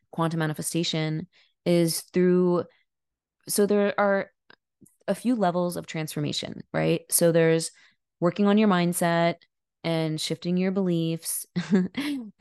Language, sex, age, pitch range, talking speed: English, female, 20-39, 160-185 Hz, 110 wpm